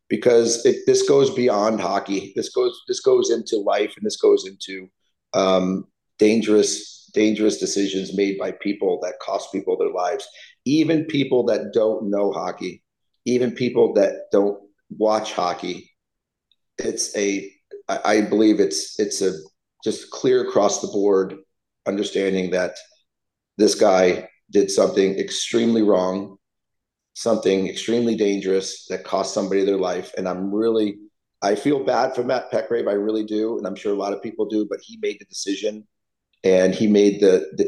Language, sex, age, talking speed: English, male, 40-59, 155 wpm